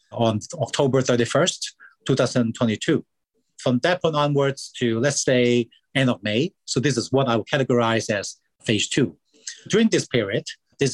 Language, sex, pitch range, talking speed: English, male, 115-135 Hz, 155 wpm